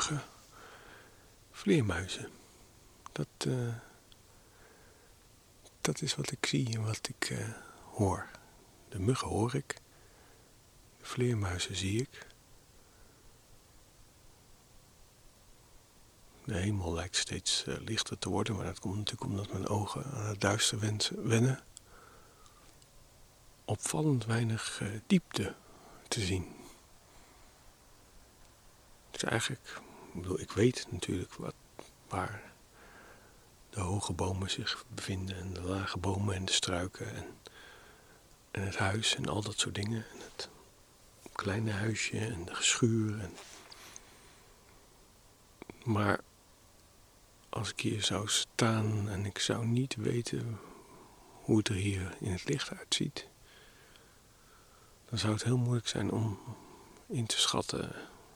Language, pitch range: Dutch, 100-115 Hz